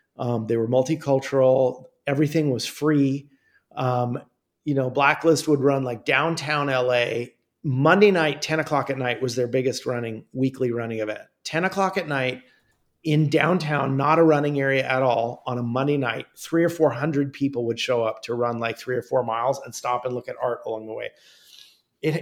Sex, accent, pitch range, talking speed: male, American, 130-155 Hz, 185 wpm